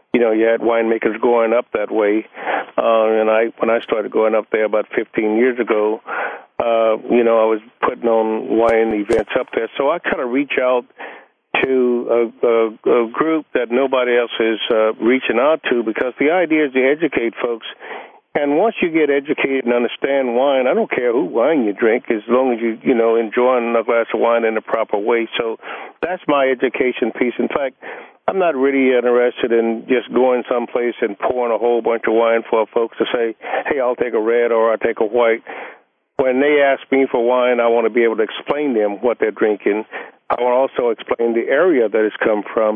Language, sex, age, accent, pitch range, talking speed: English, male, 50-69, American, 115-130 Hz, 215 wpm